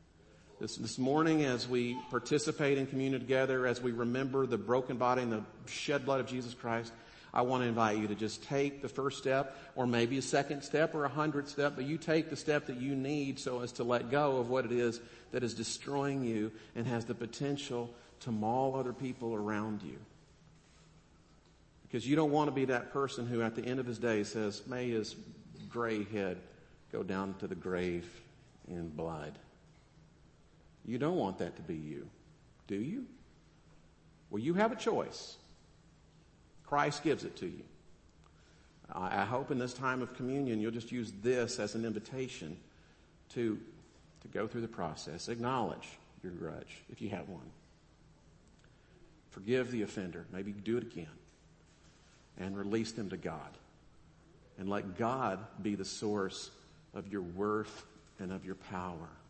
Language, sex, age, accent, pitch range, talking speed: English, male, 50-69, American, 105-135 Hz, 175 wpm